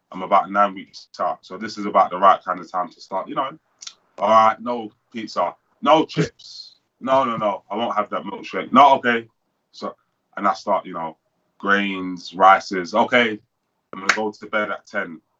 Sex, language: male, English